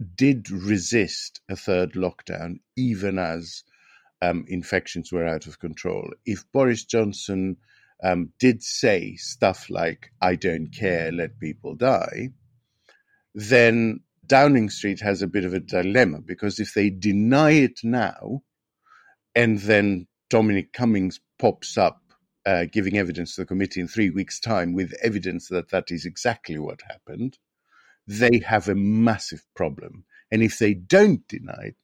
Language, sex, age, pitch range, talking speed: English, male, 50-69, 95-120 Hz, 145 wpm